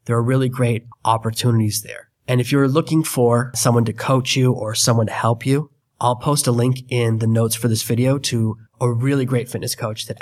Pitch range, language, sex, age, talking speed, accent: 110-125 Hz, English, male, 20-39, 215 wpm, American